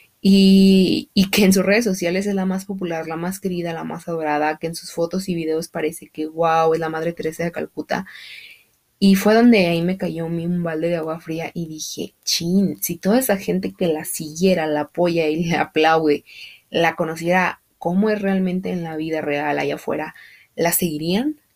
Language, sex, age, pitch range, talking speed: Spanish, female, 20-39, 155-185 Hz, 200 wpm